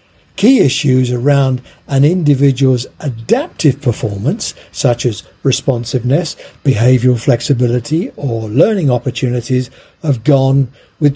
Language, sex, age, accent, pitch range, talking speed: English, male, 50-69, British, 125-155 Hz, 95 wpm